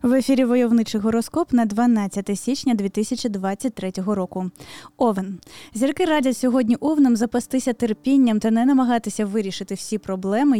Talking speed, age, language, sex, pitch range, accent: 125 wpm, 20-39, Ukrainian, female, 205-255 Hz, native